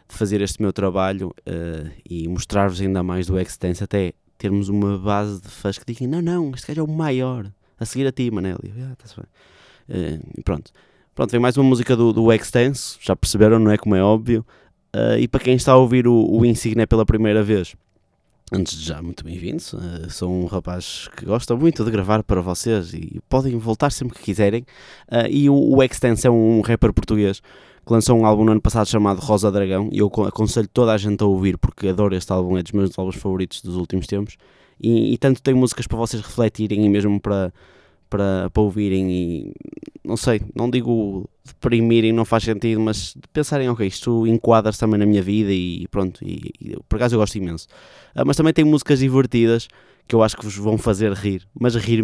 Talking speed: 205 wpm